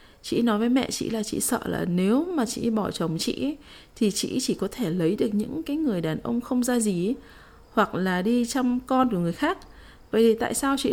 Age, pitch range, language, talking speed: 20-39, 195-245 Hz, Vietnamese, 235 wpm